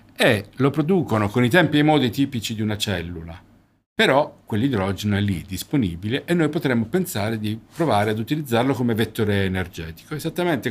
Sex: male